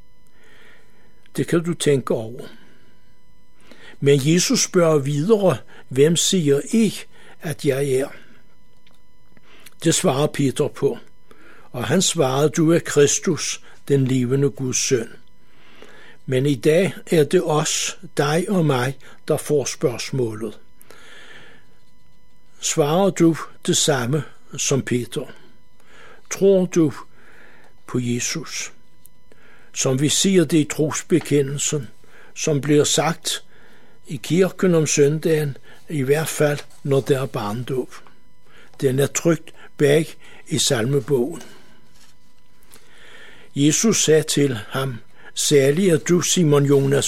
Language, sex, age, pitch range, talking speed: Danish, male, 60-79, 140-165 Hz, 110 wpm